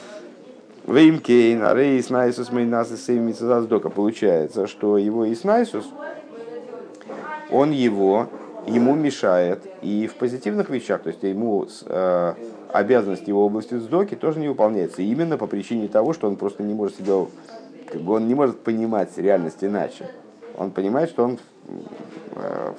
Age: 50-69